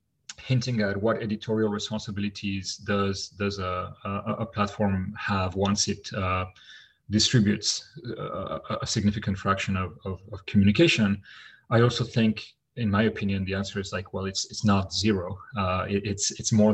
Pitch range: 100-115 Hz